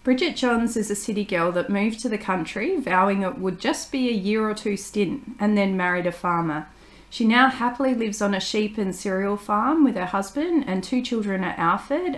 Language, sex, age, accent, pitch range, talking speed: English, female, 40-59, Australian, 185-225 Hz, 215 wpm